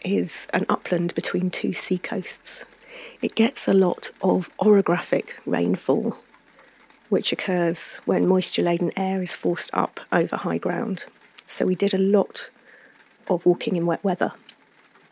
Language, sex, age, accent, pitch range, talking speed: English, female, 30-49, British, 170-220 Hz, 140 wpm